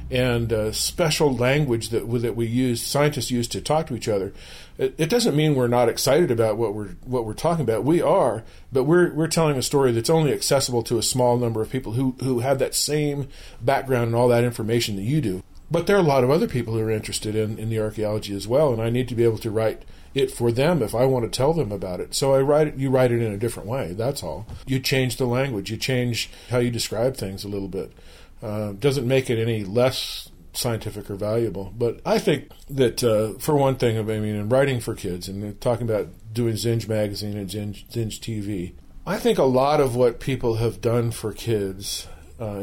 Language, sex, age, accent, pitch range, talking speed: English, male, 40-59, American, 105-130 Hz, 235 wpm